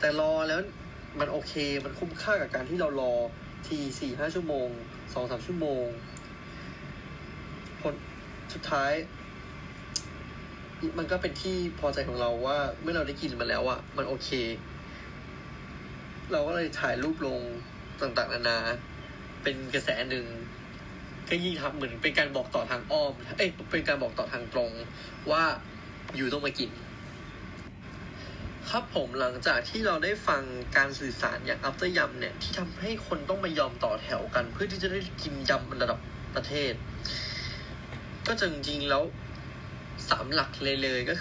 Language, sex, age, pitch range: Thai, male, 20-39, 120-160 Hz